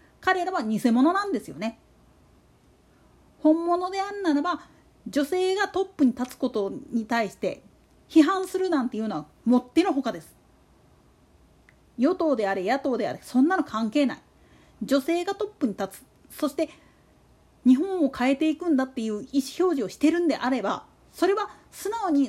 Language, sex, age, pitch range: Japanese, female, 40-59, 250-340 Hz